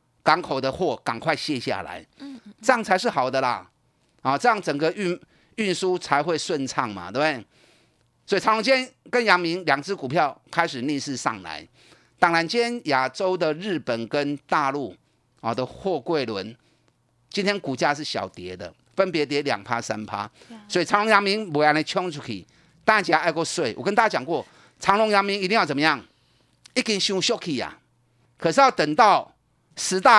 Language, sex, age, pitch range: Chinese, male, 30-49, 140-200 Hz